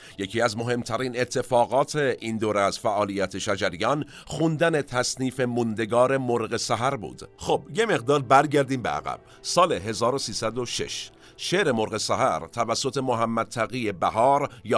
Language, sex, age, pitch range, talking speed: Persian, male, 50-69, 110-130 Hz, 125 wpm